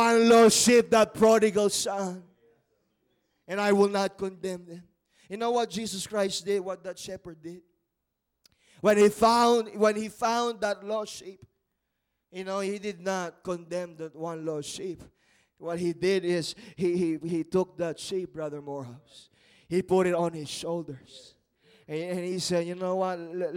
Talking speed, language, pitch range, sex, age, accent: 170 wpm, English, 170-200 Hz, male, 20-39, Filipino